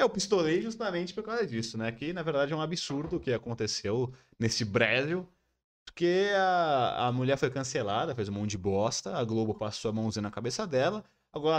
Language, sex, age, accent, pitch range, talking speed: Portuguese, male, 20-39, Brazilian, 115-160 Hz, 195 wpm